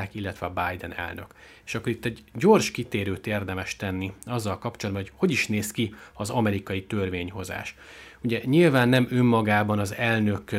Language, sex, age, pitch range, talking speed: Hungarian, male, 30-49, 100-115 Hz, 160 wpm